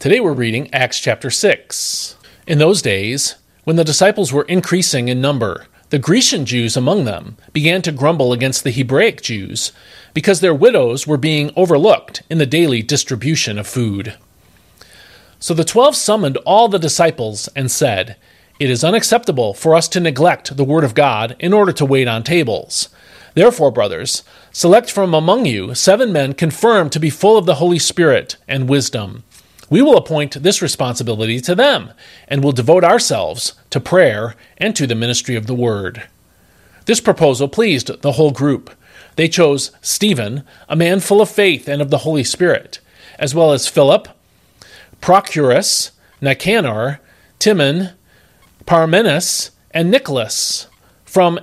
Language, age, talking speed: English, 40-59, 155 wpm